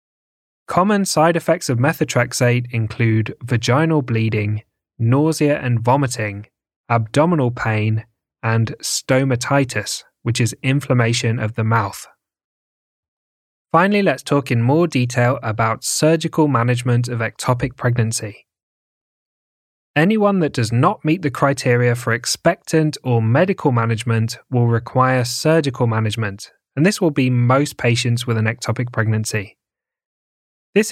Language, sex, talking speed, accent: English, male, 115 wpm, British